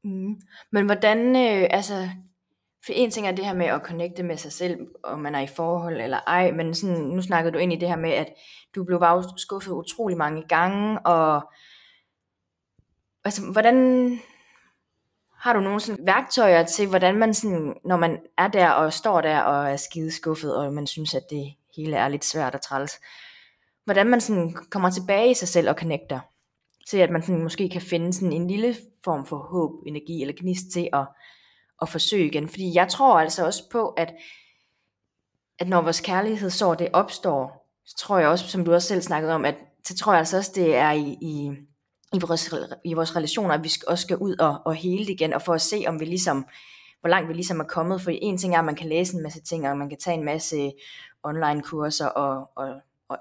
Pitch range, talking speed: 155-190 Hz, 215 wpm